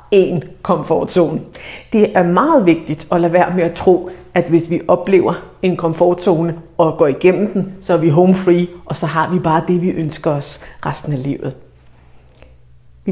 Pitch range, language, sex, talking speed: 145-190 Hz, Danish, female, 185 wpm